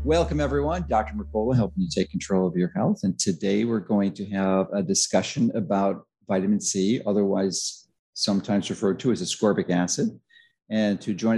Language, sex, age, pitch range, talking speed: English, male, 50-69, 100-125 Hz, 170 wpm